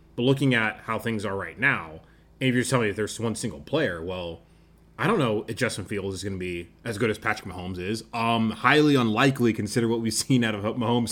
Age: 20-39